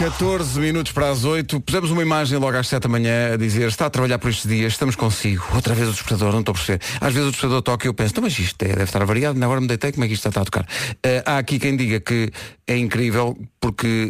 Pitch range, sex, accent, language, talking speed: 110-135 Hz, male, Portuguese, Portuguese, 280 wpm